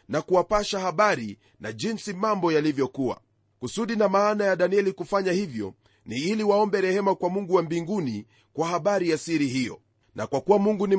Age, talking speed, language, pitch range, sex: 40-59, 175 wpm, Swahili, 150-200 Hz, male